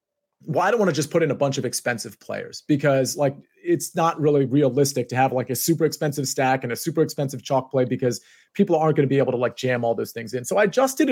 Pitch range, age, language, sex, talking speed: 130-160 Hz, 30-49, English, male, 265 wpm